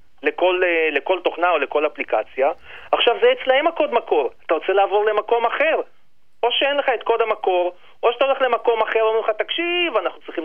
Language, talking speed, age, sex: Hebrew, 185 wpm, 40-59, male